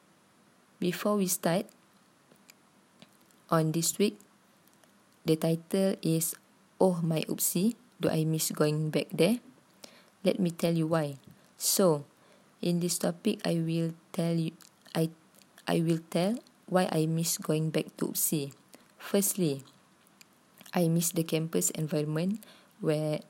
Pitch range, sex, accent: 160-190 Hz, female, Malaysian